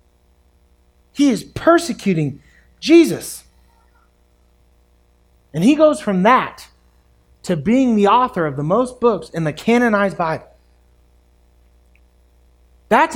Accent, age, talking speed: American, 30-49, 100 wpm